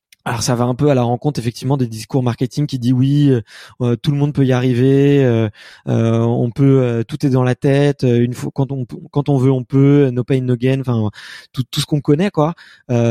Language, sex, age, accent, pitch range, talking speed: French, male, 20-39, French, 120-145 Hz, 245 wpm